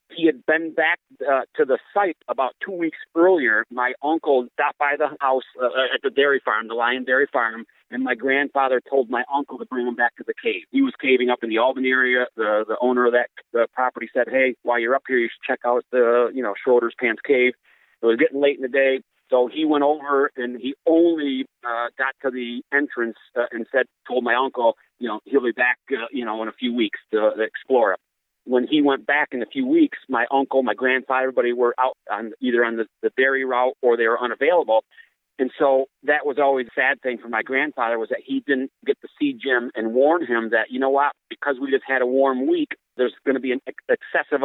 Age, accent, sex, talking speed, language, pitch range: 40-59, American, male, 240 wpm, English, 120-150 Hz